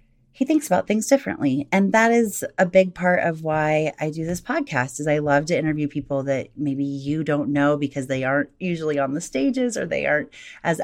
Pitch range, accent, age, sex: 135-180 Hz, American, 30-49, female